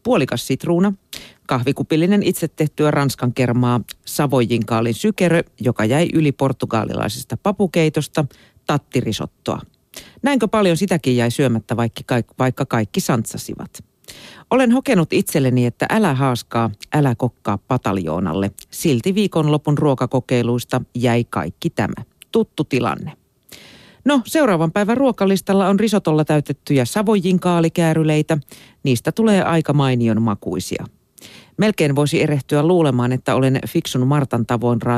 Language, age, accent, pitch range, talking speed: Finnish, 40-59, native, 120-170 Hz, 110 wpm